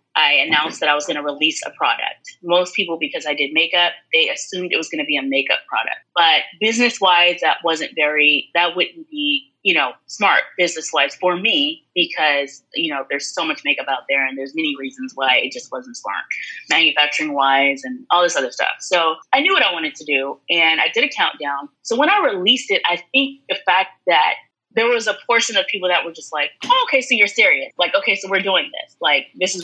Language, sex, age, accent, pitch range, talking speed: English, female, 20-39, American, 150-230 Hz, 225 wpm